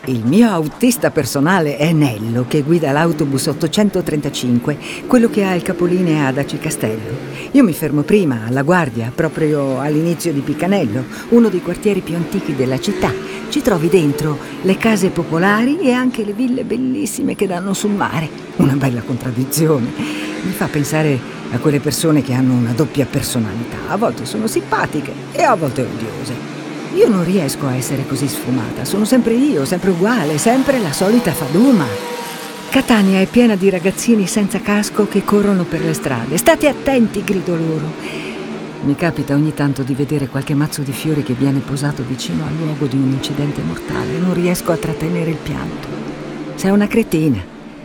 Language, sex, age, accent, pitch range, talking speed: Italian, female, 50-69, native, 135-195 Hz, 165 wpm